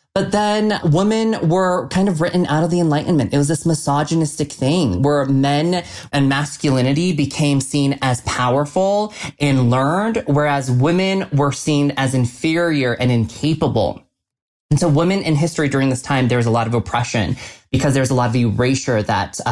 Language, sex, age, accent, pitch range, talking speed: English, male, 20-39, American, 125-160 Hz, 170 wpm